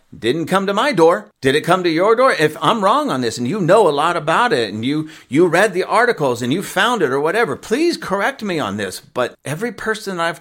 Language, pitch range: English, 145-225 Hz